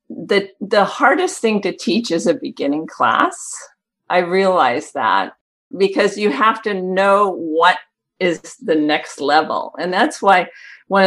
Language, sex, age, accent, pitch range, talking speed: English, female, 50-69, American, 170-255 Hz, 145 wpm